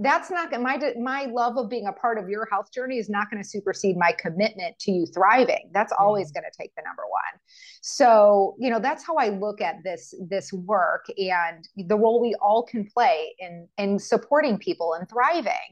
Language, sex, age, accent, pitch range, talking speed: English, female, 30-49, American, 185-235 Hz, 210 wpm